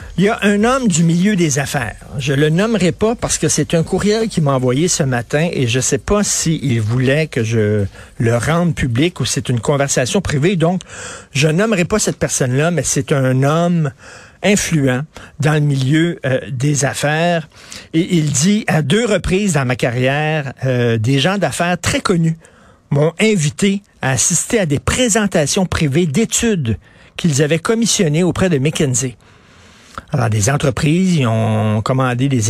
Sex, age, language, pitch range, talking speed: male, 50-69, French, 130-175 Hz, 175 wpm